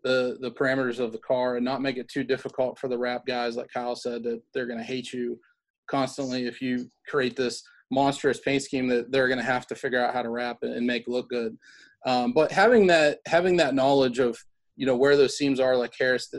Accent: American